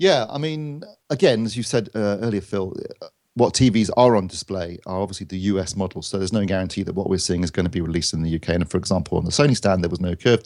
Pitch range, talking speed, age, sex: 95-125 Hz, 270 wpm, 40-59, male